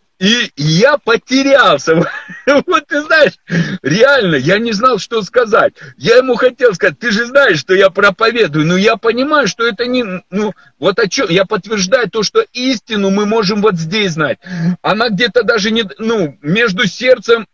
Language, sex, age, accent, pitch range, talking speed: Russian, male, 50-69, native, 190-245 Hz, 170 wpm